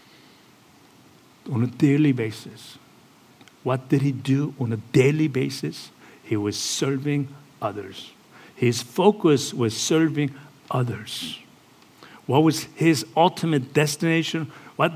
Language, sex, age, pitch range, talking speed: English, male, 60-79, 125-160 Hz, 110 wpm